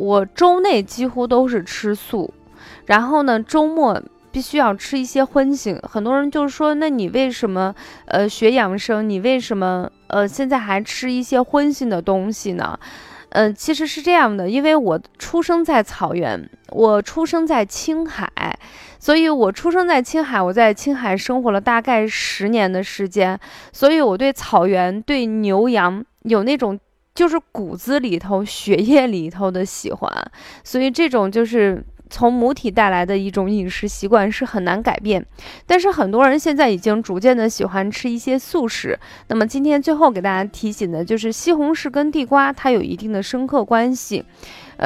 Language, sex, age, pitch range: Chinese, female, 20-39, 205-275 Hz